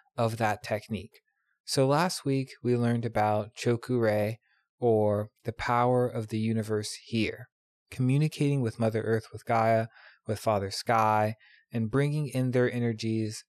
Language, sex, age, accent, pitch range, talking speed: English, male, 20-39, American, 110-135 Hz, 140 wpm